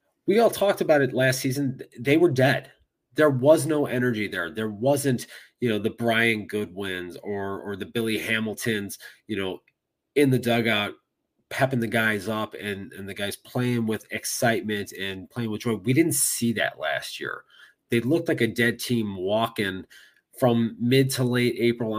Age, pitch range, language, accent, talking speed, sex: 30-49, 110-135 Hz, English, American, 175 wpm, male